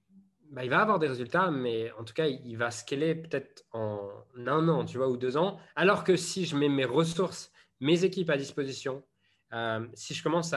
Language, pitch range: French, 120-165 Hz